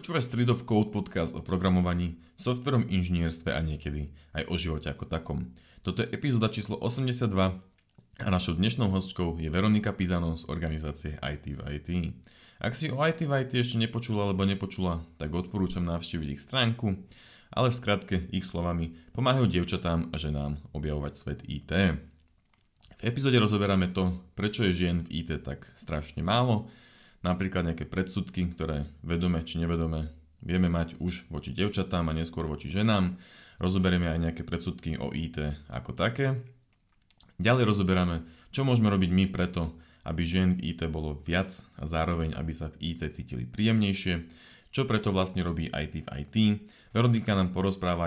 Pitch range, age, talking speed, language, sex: 80-100 Hz, 30-49, 155 wpm, Slovak, male